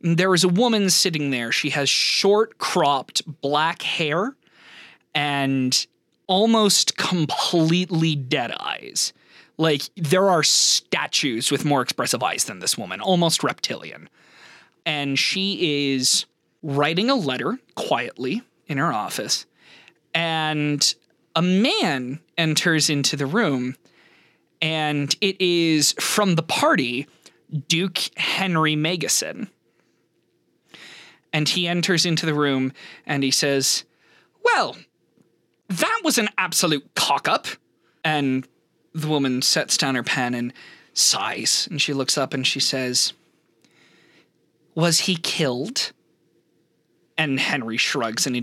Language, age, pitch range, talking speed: English, 20-39, 140-170 Hz, 120 wpm